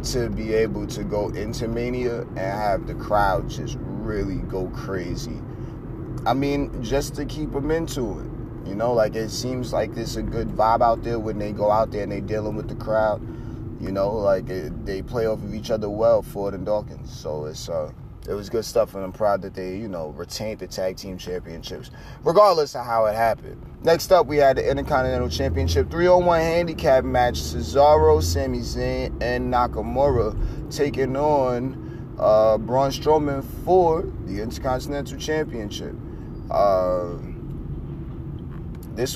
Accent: American